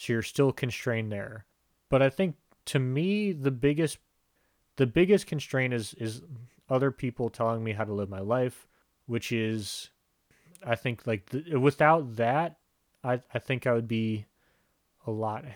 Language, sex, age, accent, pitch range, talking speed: English, male, 30-49, American, 110-135 Hz, 160 wpm